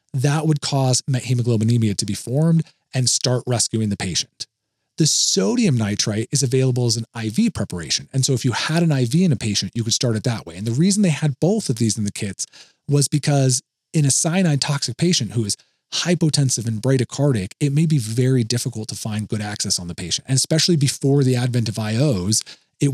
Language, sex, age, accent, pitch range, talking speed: English, male, 40-59, American, 115-145 Hz, 210 wpm